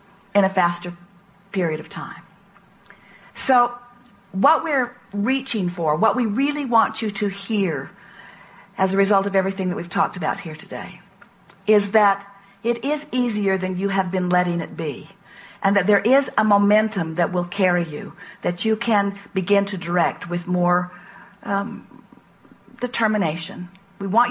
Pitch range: 190-210 Hz